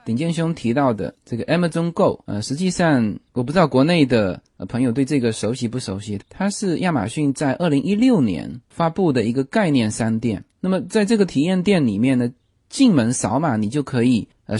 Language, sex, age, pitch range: Chinese, male, 20-39, 115-180 Hz